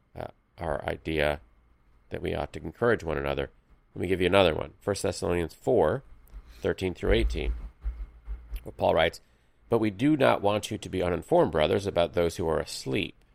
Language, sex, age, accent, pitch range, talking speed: English, male, 40-59, American, 70-95 Hz, 170 wpm